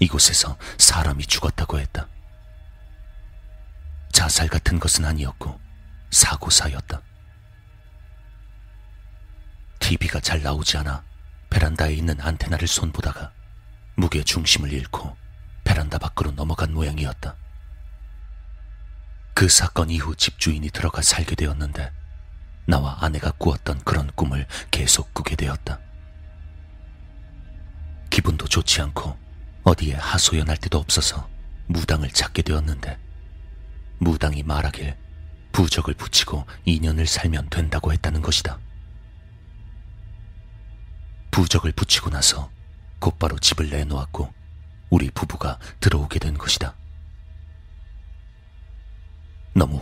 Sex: male